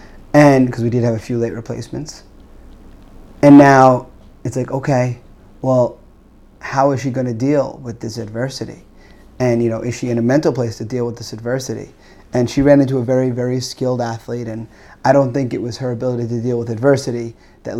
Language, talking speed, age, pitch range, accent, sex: English, 200 wpm, 30-49, 115-130 Hz, American, male